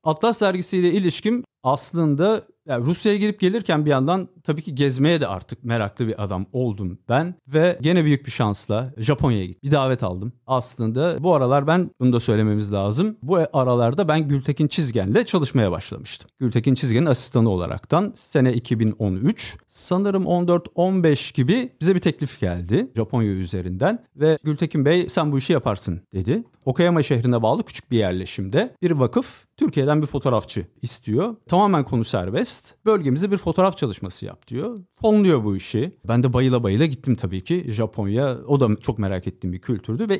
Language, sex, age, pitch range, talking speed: Turkish, male, 50-69, 115-175 Hz, 160 wpm